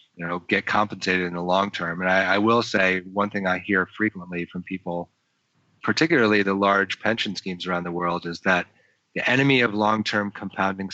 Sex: male